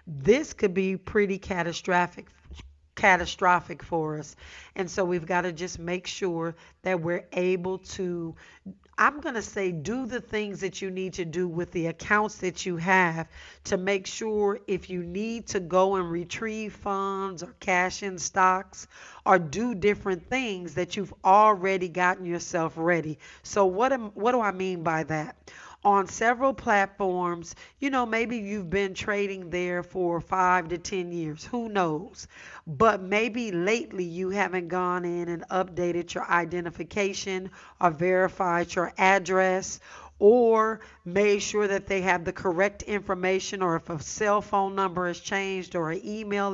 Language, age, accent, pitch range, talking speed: English, 40-59, American, 175-205 Hz, 160 wpm